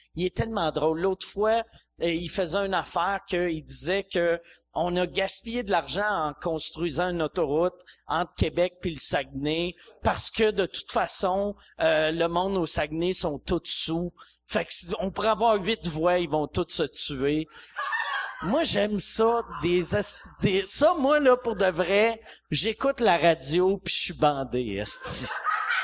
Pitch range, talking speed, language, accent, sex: 170-220 Hz, 170 wpm, French, Canadian, male